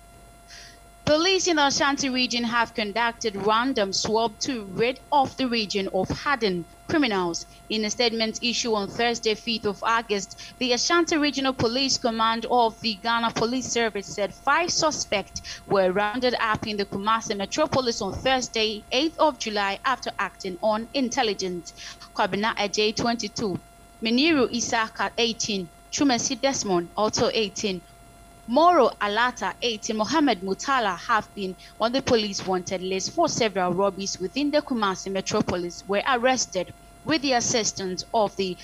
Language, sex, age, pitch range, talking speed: English, female, 20-39, 200-255 Hz, 145 wpm